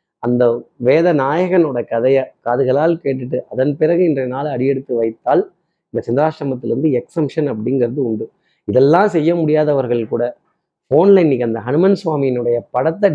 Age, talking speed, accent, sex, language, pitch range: 30-49, 125 wpm, native, male, Tamil, 125-170 Hz